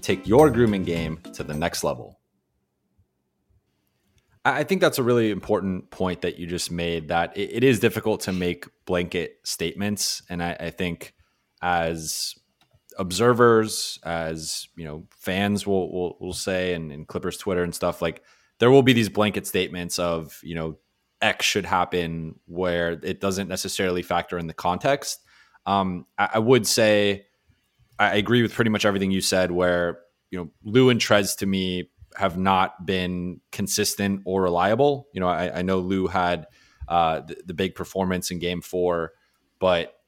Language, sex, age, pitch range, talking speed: English, male, 20-39, 85-105 Hz, 170 wpm